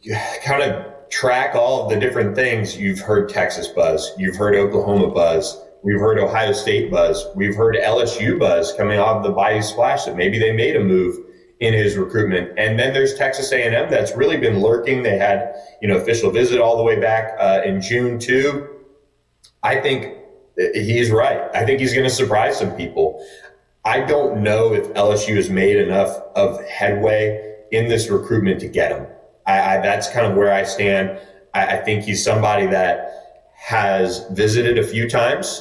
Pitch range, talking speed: 100-140 Hz, 185 wpm